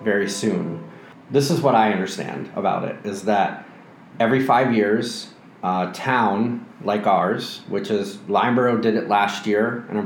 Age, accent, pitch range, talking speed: 30-49, American, 105-125 Hz, 160 wpm